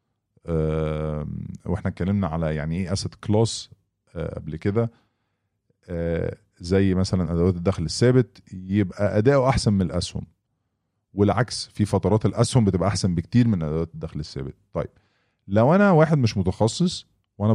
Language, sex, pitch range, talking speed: English, male, 85-115 Hz, 125 wpm